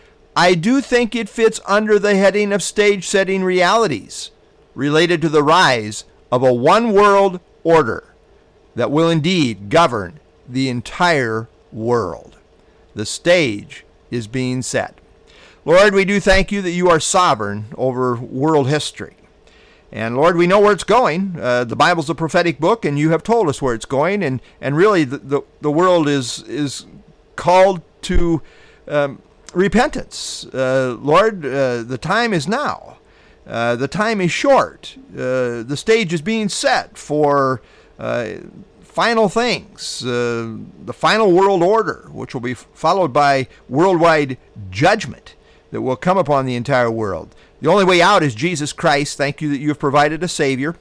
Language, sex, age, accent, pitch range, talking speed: English, male, 50-69, American, 130-190 Hz, 155 wpm